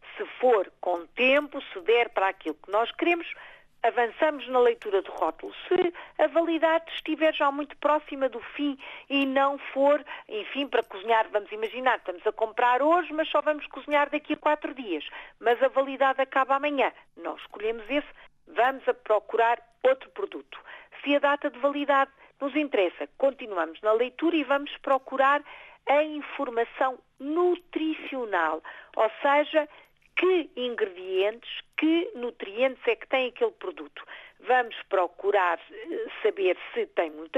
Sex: female